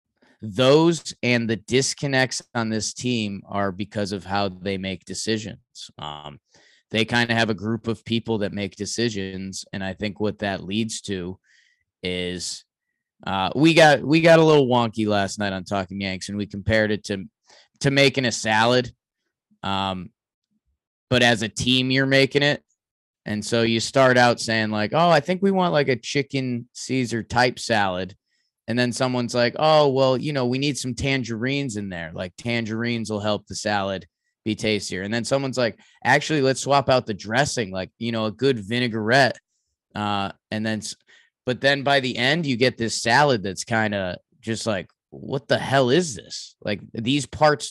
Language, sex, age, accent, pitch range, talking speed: English, male, 20-39, American, 105-130 Hz, 180 wpm